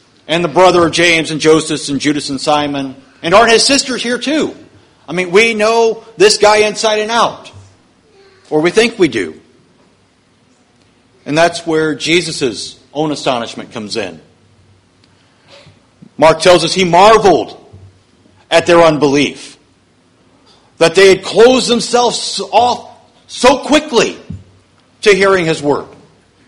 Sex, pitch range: male, 150-195 Hz